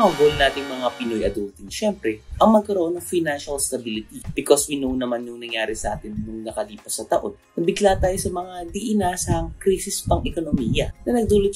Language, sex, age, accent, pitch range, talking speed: English, male, 20-39, Filipino, 120-205 Hz, 170 wpm